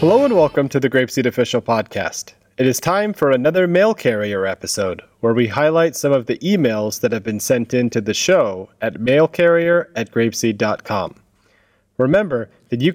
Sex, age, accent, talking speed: male, 30-49, American, 170 wpm